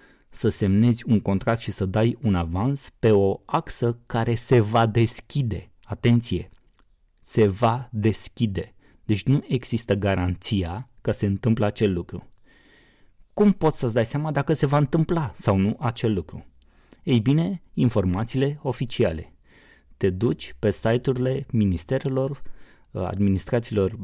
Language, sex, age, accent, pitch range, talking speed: Romanian, male, 30-49, native, 100-125 Hz, 130 wpm